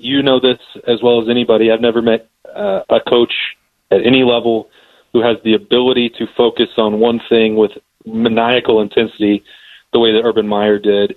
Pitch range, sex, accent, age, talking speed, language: 110-125 Hz, male, American, 30-49, 185 wpm, English